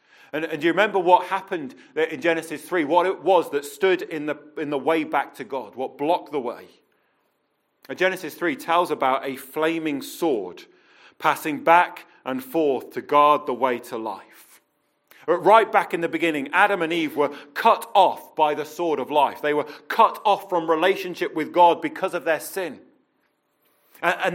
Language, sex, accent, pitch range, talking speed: English, male, British, 160-210 Hz, 175 wpm